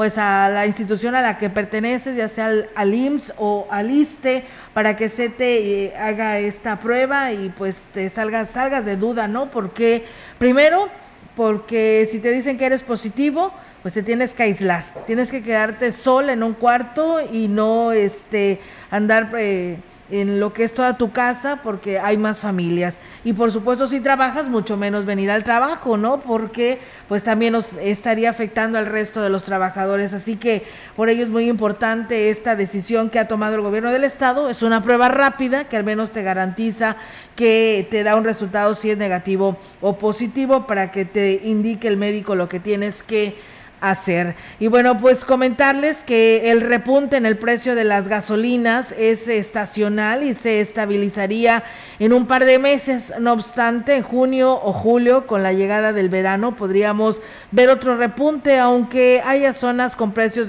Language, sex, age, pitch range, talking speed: Spanish, female, 40-59, 210-245 Hz, 180 wpm